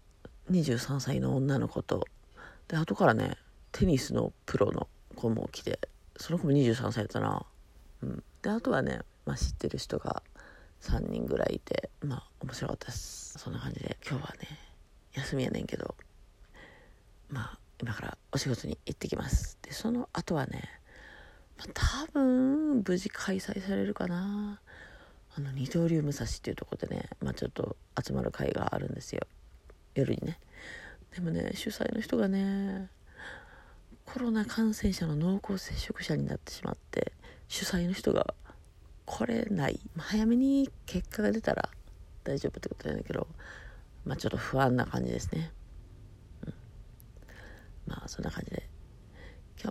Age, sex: 40-59, female